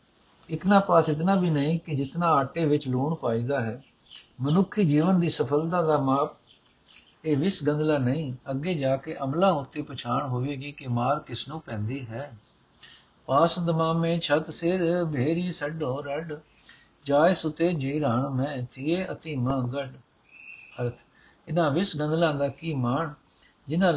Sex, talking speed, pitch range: male, 140 wpm, 135-170 Hz